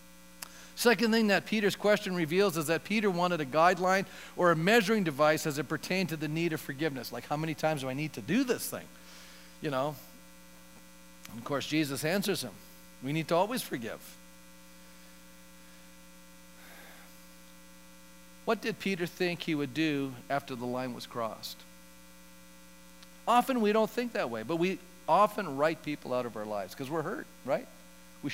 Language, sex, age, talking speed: English, male, 50-69, 170 wpm